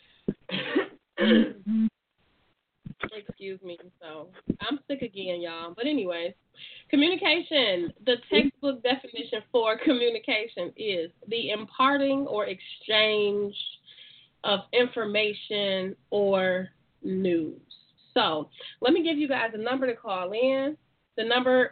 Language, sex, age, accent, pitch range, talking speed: English, female, 20-39, American, 195-245 Hz, 100 wpm